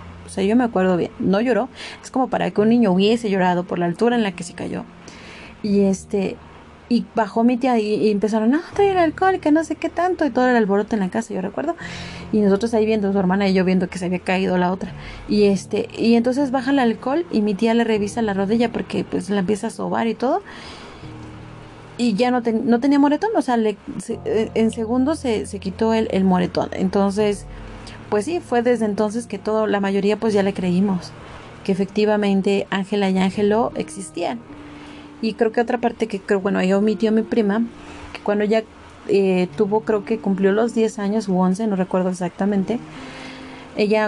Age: 30-49